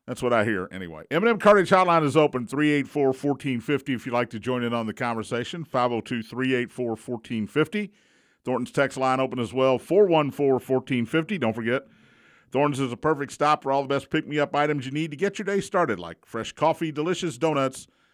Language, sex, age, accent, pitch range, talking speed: English, male, 50-69, American, 120-155 Hz, 175 wpm